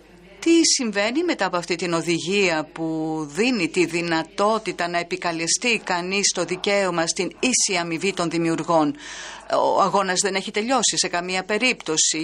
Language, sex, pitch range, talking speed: French, female, 170-210 Hz, 140 wpm